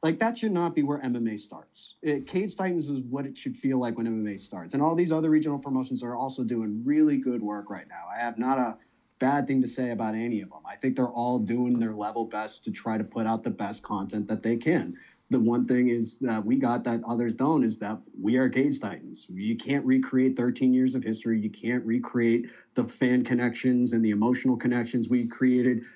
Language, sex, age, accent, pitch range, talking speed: English, male, 30-49, American, 115-135 Hz, 230 wpm